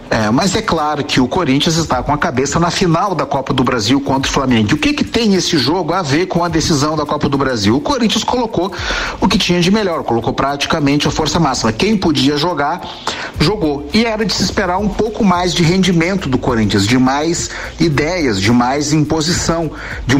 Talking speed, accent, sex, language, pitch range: 210 wpm, Brazilian, male, Portuguese, 140-185 Hz